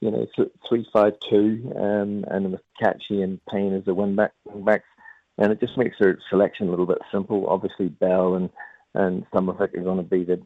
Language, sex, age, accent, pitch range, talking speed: English, male, 50-69, British, 95-110 Hz, 220 wpm